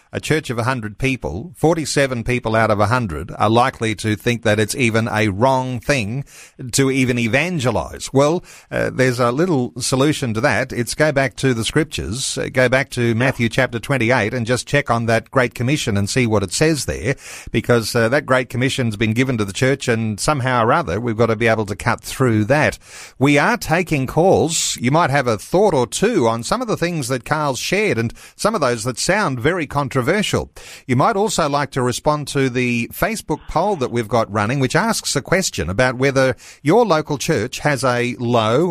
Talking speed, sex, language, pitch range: 210 wpm, male, English, 120-145 Hz